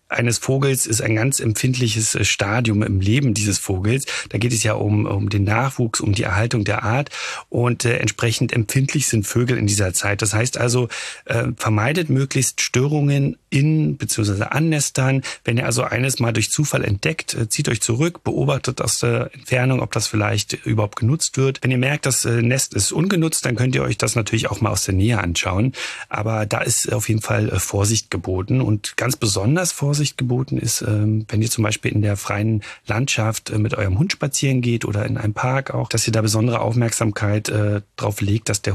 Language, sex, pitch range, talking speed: German, male, 105-130 Hz, 195 wpm